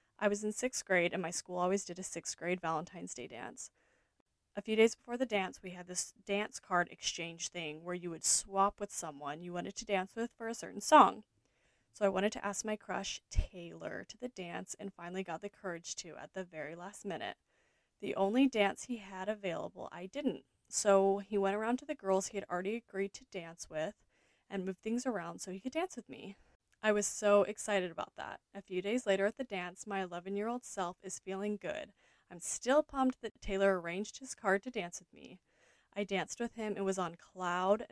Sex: female